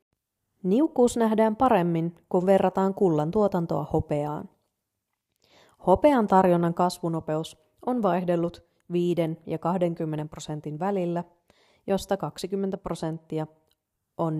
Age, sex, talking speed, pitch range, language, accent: 30-49, female, 90 wpm, 155-200 Hz, Finnish, native